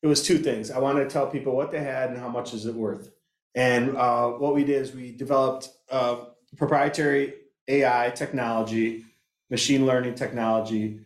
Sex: male